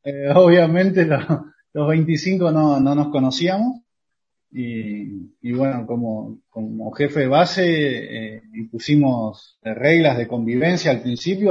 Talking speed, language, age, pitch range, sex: 125 wpm, Spanish, 20-39, 115-150 Hz, male